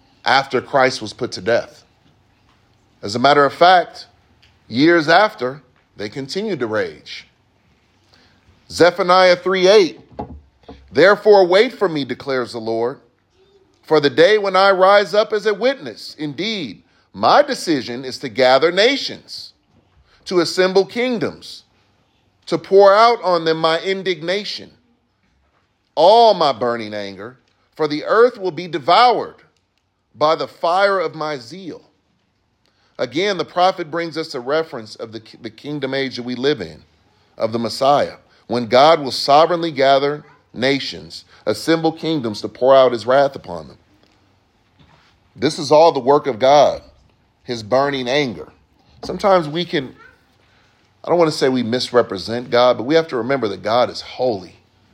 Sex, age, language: male, 40-59, English